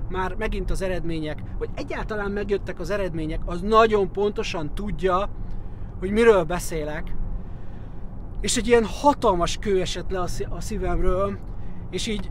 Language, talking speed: Hungarian, 130 wpm